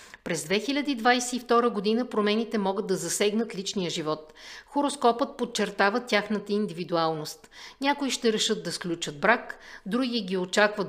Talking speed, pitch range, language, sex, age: 120 wpm, 180-235 Hz, Bulgarian, female, 50-69